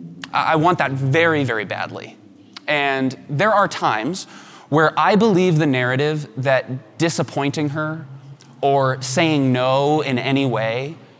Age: 20-39